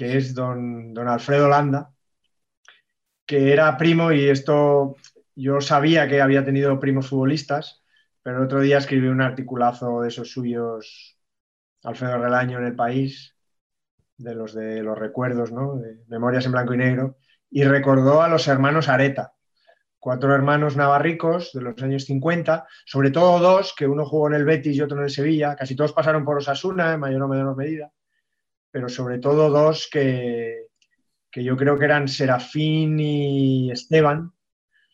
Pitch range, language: 130-155 Hz, Spanish